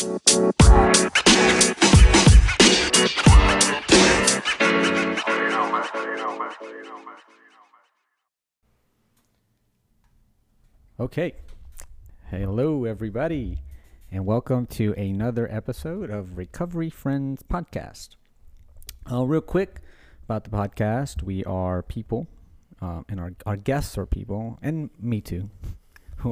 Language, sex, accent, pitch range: English, male, American, 95-115 Hz